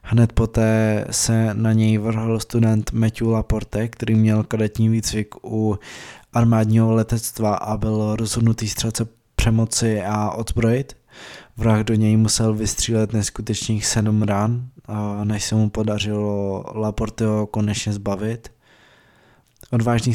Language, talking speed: Czech, 115 wpm